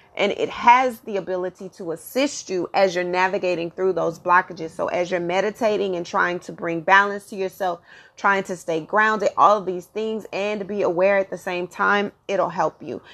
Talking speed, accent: 195 wpm, American